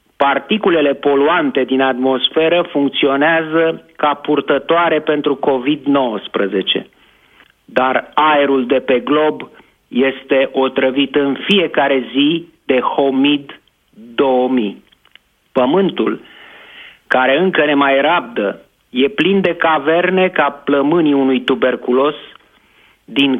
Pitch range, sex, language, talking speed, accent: 135-170 Hz, male, Romanian, 95 wpm, native